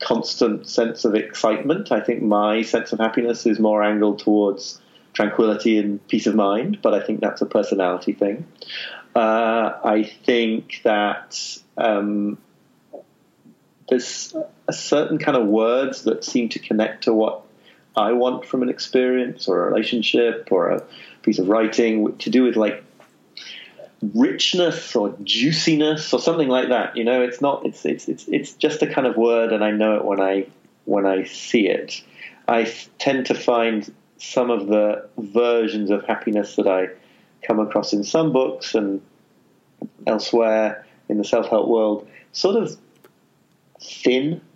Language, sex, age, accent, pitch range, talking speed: English, male, 30-49, British, 105-125 Hz, 155 wpm